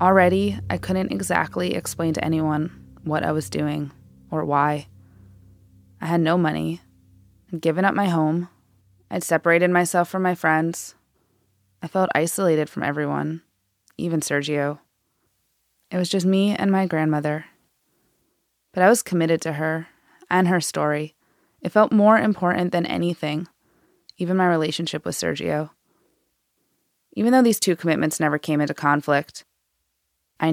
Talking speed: 140 wpm